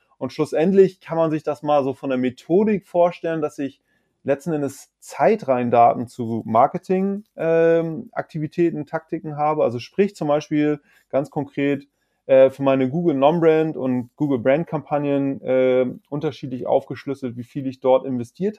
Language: German